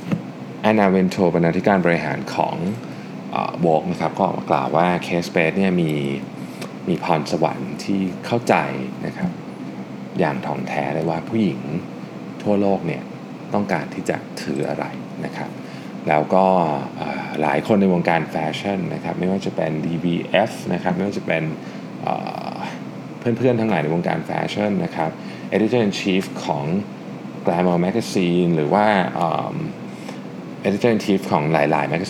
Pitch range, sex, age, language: 75-100 Hz, male, 20-39, Thai